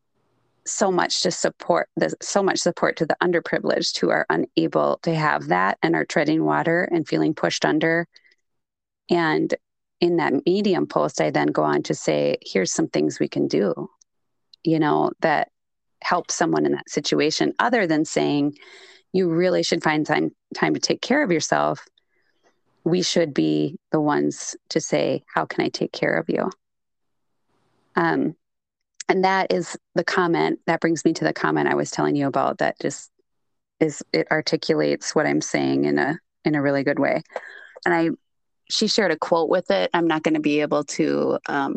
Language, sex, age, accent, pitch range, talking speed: English, female, 30-49, American, 145-175 Hz, 180 wpm